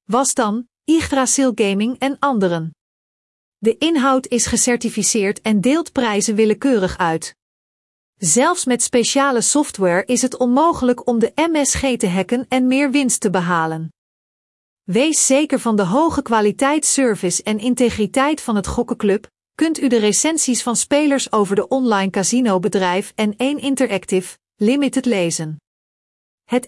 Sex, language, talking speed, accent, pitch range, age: female, Dutch, 135 wpm, Dutch, 205-270 Hz, 40-59